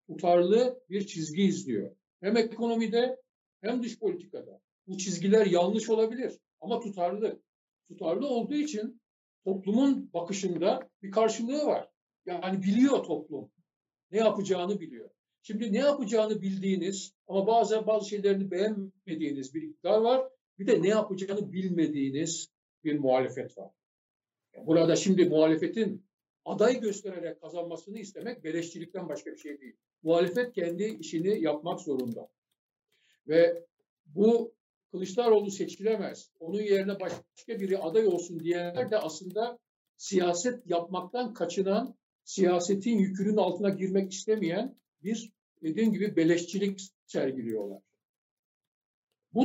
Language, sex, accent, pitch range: Turkish, male, native, 175-225 Hz